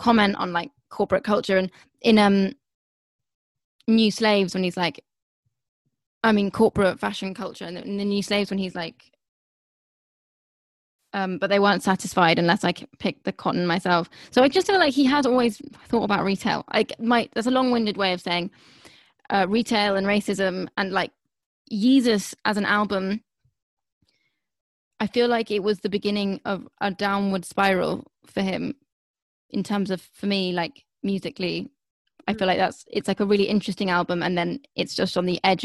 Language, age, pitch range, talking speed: English, 10-29, 185-210 Hz, 175 wpm